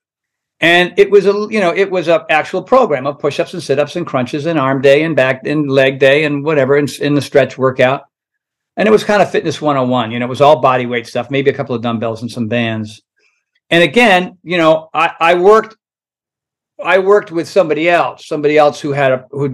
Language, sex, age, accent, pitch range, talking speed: English, male, 50-69, American, 130-180 Hz, 225 wpm